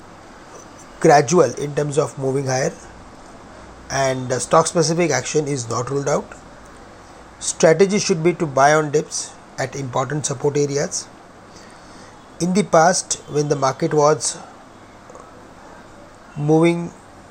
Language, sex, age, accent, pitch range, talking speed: English, male, 30-49, Indian, 135-160 Hz, 115 wpm